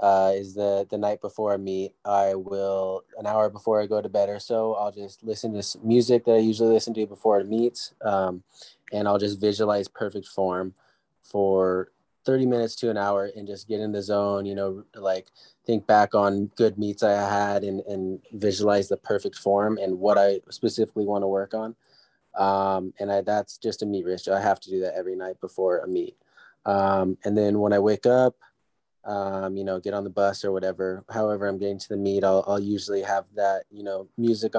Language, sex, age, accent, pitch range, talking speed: English, male, 20-39, American, 100-110 Hz, 215 wpm